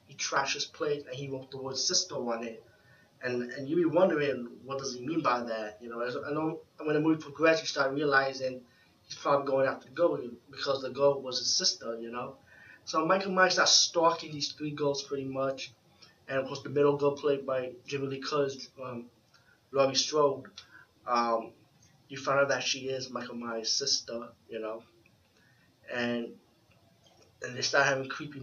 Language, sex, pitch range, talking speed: English, male, 120-140 Hz, 195 wpm